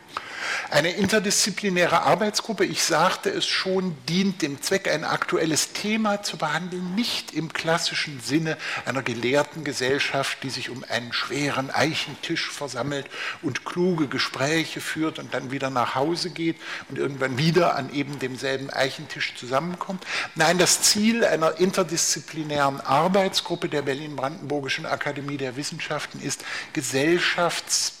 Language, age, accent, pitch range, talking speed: German, 50-69, German, 135-180 Hz, 130 wpm